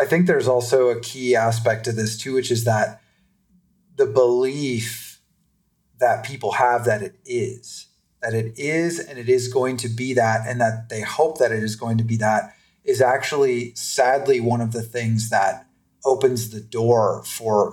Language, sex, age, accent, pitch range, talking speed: English, male, 30-49, American, 115-145 Hz, 185 wpm